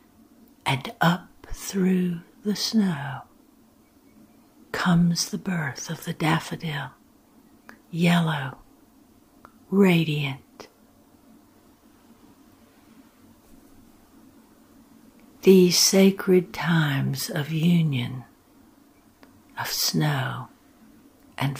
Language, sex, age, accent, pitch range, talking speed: English, female, 60-79, American, 165-265 Hz, 60 wpm